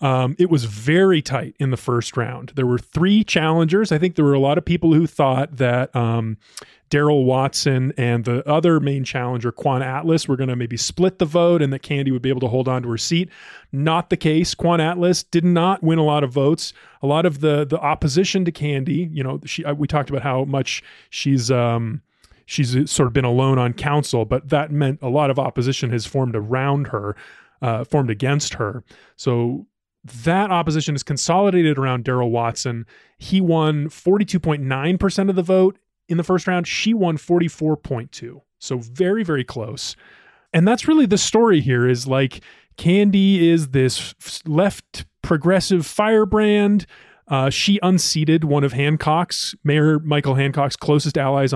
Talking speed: 180 wpm